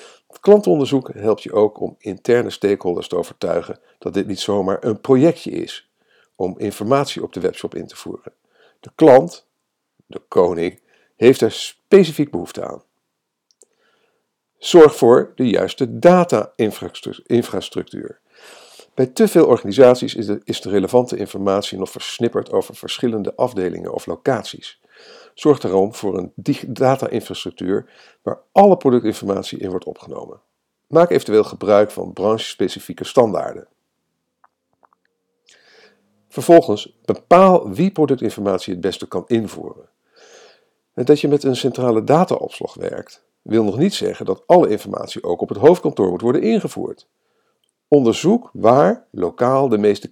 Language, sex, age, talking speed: Dutch, male, 50-69, 125 wpm